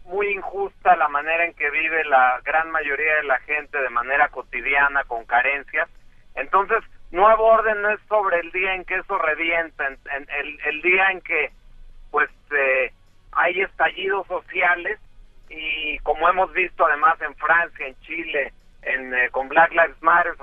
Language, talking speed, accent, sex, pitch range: English, 165 wpm, Mexican, male, 145-195 Hz